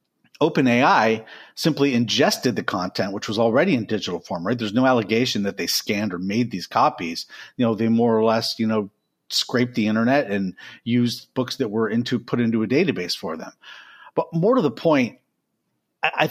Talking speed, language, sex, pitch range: 190 wpm, English, male, 110-140 Hz